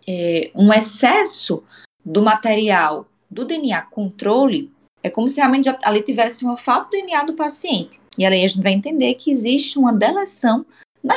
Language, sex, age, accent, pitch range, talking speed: Portuguese, female, 20-39, Brazilian, 200-275 Hz, 160 wpm